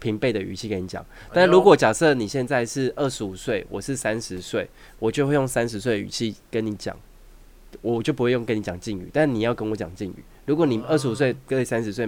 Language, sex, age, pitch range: Chinese, male, 20-39, 100-125 Hz